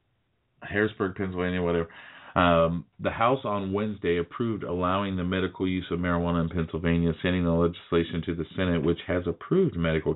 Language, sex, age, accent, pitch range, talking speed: English, male, 40-59, American, 85-105 Hz, 160 wpm